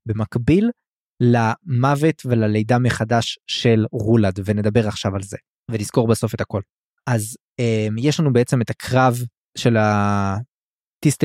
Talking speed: 125 wpm